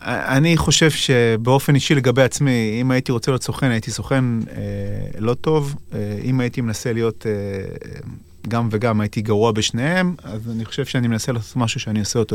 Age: 30-49